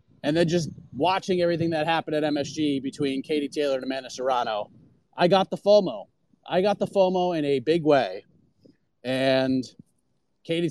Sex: male